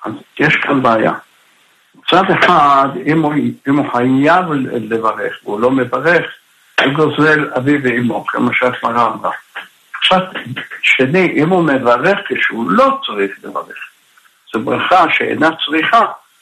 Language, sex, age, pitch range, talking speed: Hebrew, male, 60-79, 135-190 Hz, 125 wpm